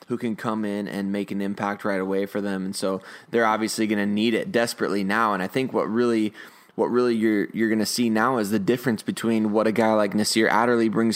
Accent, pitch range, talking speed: American, 105-120 Hz, 245 wpm